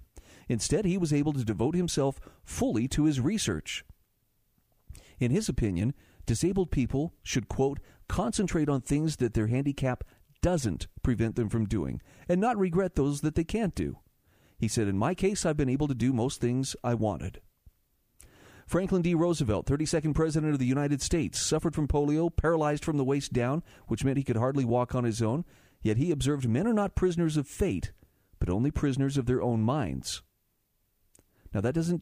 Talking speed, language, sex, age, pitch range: 180 wpm, English, male, 50-69, 115-160 Hz